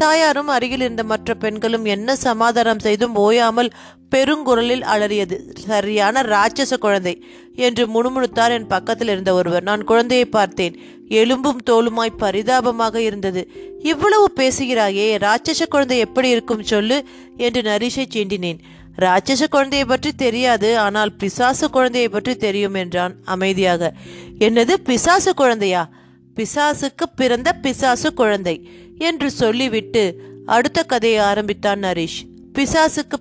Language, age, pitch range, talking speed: Tamil, 30-49, 205-260 Hz, 105 wpm